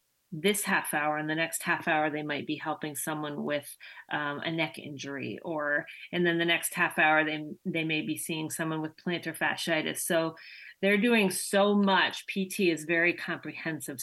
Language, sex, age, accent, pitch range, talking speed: English, female, 40-59, American, 155-185 Hz, 185 wpm